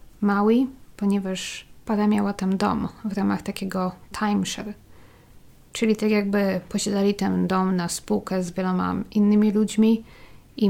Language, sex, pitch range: Polish, female, 180-210 Hz